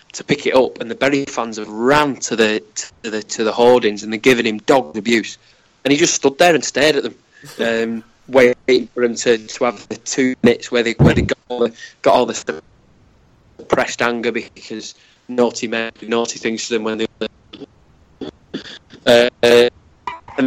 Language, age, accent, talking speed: English, 20-39, British, 195 wpm